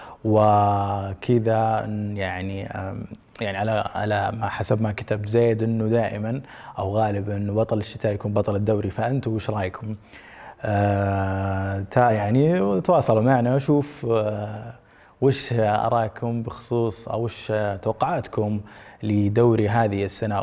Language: Arabic